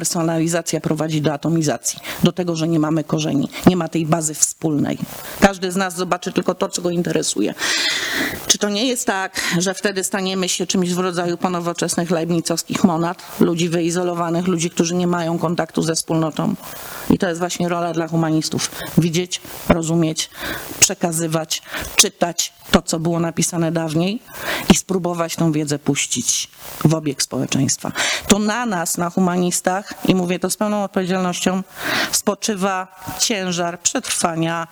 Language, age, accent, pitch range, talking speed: Polish, 40-59, native, 170-200 Hz, 150 wpm